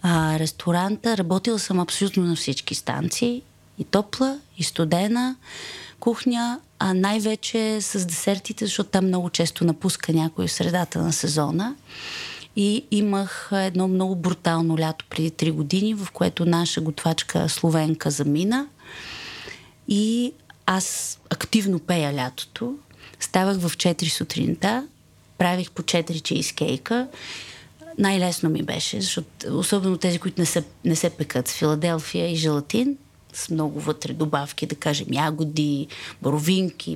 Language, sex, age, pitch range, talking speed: Bulgarian, female, 30-49, 160-205 Hz, 125 wpm